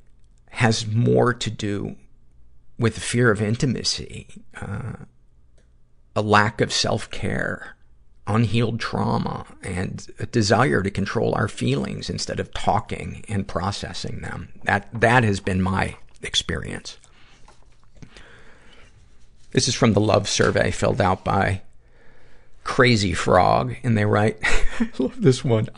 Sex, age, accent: male, 50-69, American